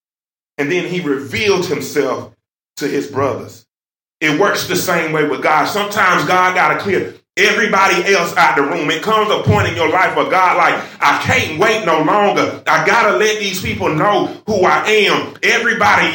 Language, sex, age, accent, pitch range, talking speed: English, male, 30-49, American, 185-235 Hz, 190 wpm